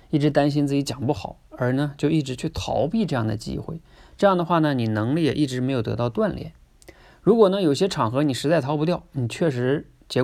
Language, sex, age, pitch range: Chinese, male, 20-39, 115-155 Hz